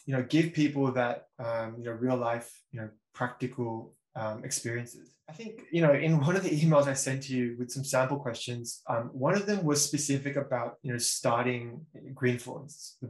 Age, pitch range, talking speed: 20-39, 120-145 Hz, 200 wpm